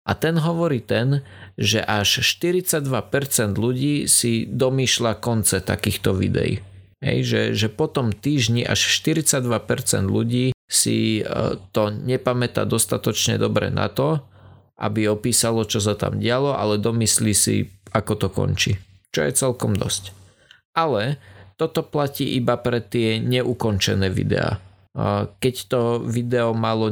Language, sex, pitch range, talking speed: Slovak, male, 105-130 Hz, 125 wpm